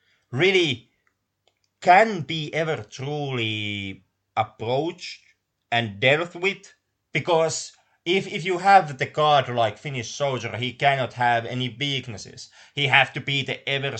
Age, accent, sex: 30-49, Finnish, male